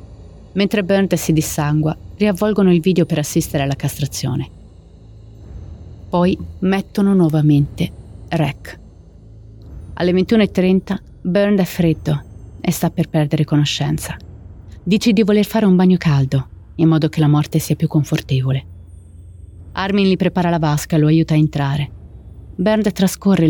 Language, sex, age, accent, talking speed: Italian, female, 30-49, native, 135 wpm